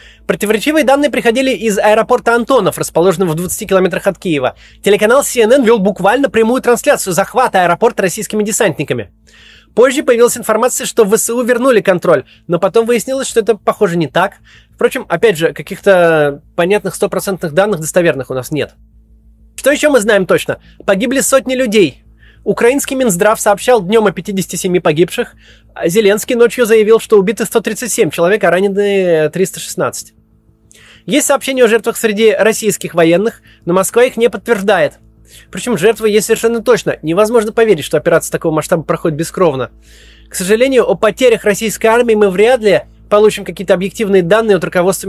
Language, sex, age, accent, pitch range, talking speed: Russian, male, 20-39, native, 180-230 Hz, 150 wpm